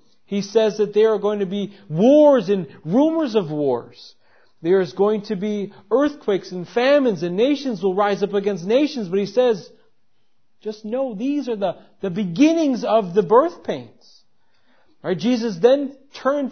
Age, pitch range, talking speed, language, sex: 40-59, 200-265 Hz, 165 wpm, English, male